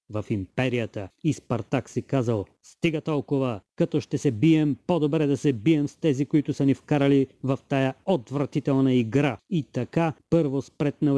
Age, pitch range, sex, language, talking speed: 30-49, 130-160 Hz, male, Bulgarian, 160 wpm